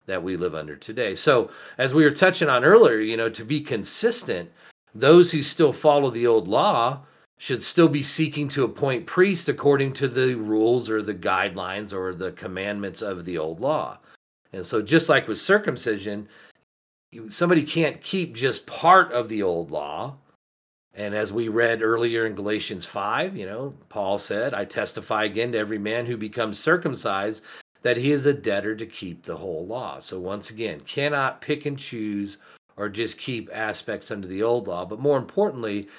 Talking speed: 180 wpm